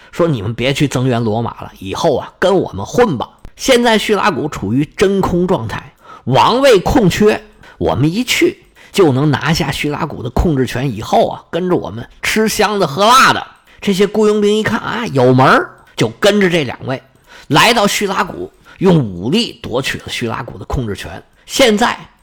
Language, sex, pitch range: Chinese, male, 125-195 Hz